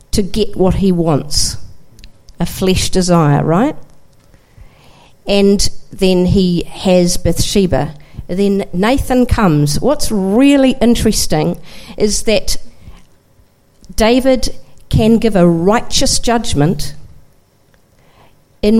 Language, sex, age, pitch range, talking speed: English, female, 50-69, 170-225 Hz, 95 wpm